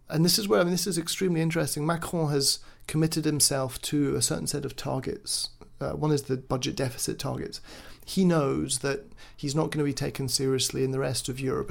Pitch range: 130-155 Hz